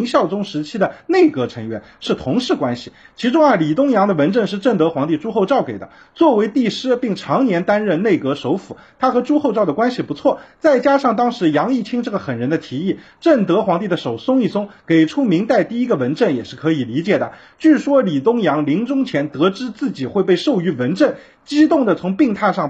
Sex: male